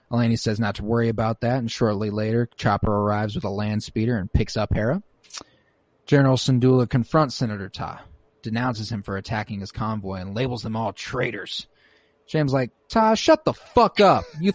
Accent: American